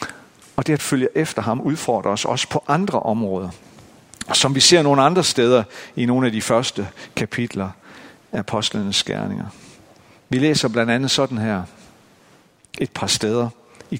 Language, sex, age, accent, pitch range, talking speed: Danish, male, 50-69, native, 115-145 Hz, 160 wpm